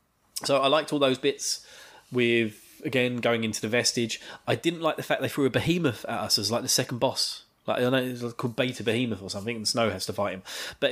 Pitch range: 120-170 Hz